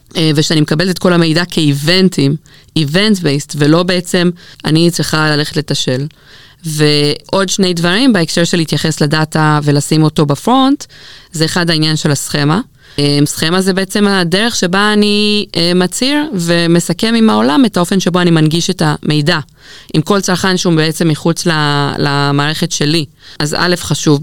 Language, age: Hebrew, 20-39